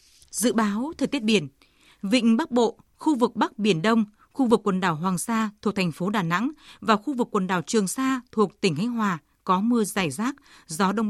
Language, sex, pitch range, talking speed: Vietnamese, female, 195-255 Hz, 220 wpm